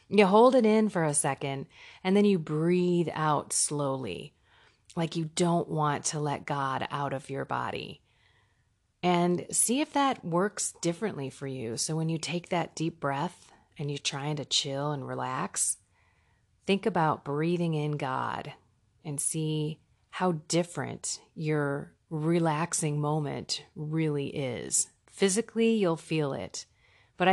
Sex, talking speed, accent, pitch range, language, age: female, 145 wpm, American, 145-180 Hz, English, 30-49